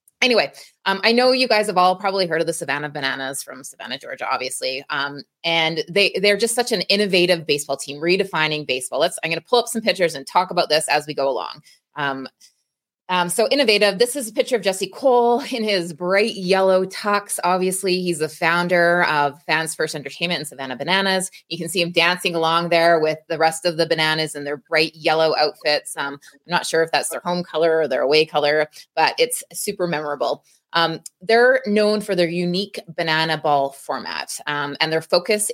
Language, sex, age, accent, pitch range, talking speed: English, female, 20-39, American, 155-195 Hz, 205 wpm